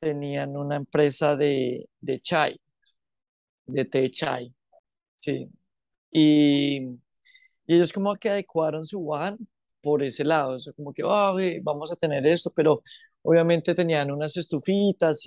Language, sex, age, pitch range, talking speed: Spanish, male, 20-39, 145-185 Hz, 135 wpm